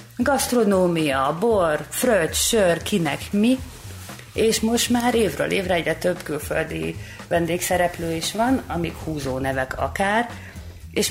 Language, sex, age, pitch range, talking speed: Hungarian, female, 30-49, 150-200 Hz, 120 wpm